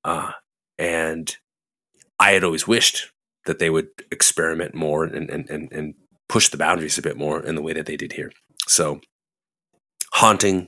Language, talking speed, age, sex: English, 170 wpm, 30-49, male